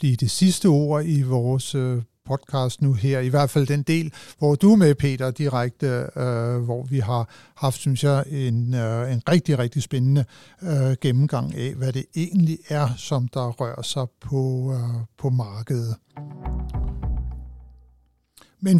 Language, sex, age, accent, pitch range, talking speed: Danish, male, 60-79, native, 130-155 Hz, 135 wpm